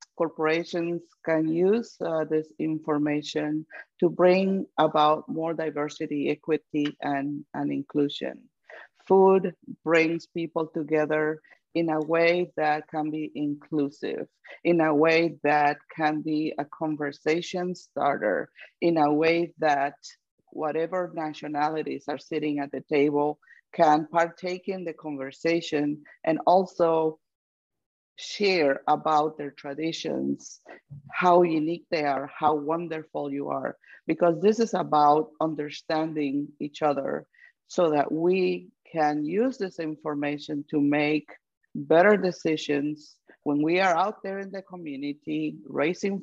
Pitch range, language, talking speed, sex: 150-170 Hz, English, 120 wpm, female